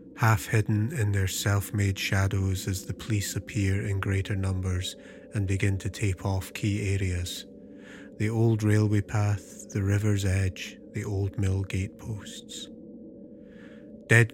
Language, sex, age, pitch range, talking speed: English, male, 30-49, 95-110 Hz, 130 wpm